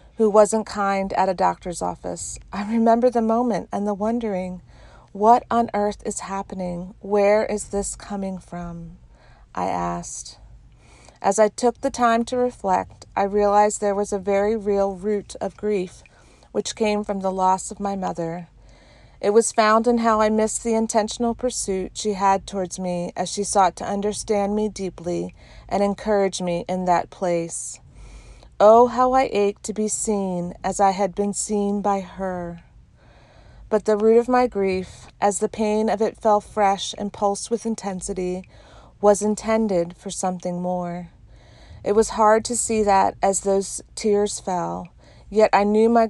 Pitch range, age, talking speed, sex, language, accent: 185-220 Hz, 40-59, 165 wpm, female, English, American